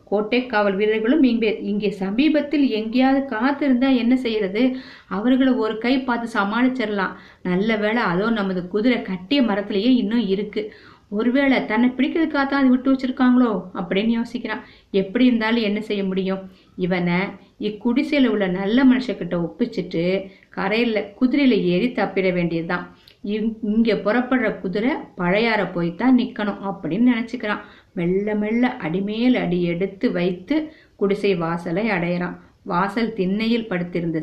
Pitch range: 190-245 Hz